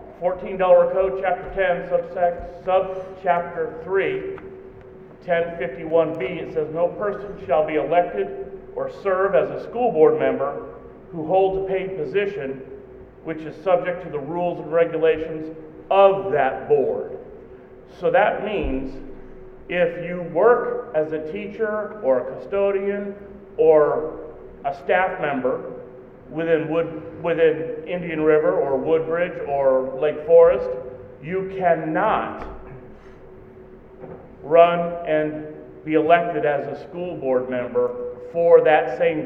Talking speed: 120 wpm